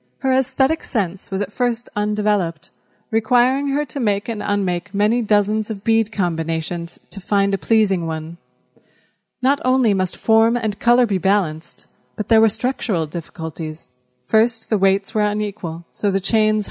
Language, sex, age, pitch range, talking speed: English, female, 30-49, 185-230 Hz, 160 wpm